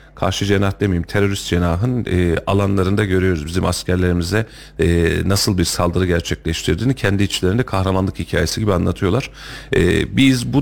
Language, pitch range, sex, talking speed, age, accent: Turkish, 90-110 Hz, male, 135 wpm, 40-59, native